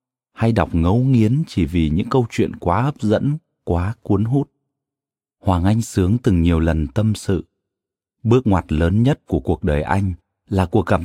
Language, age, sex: Vietnamese, 30-49, male